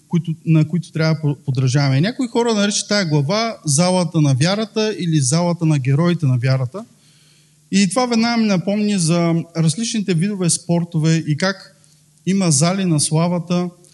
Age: 20-39